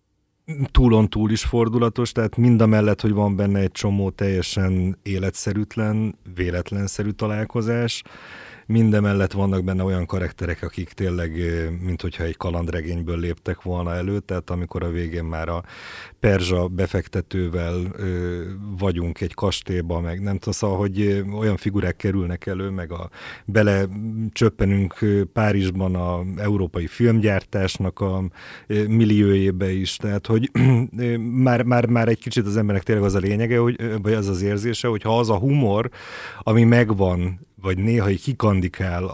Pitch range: 95-115 Hz